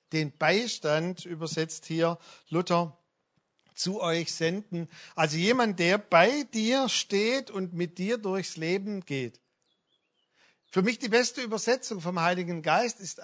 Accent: German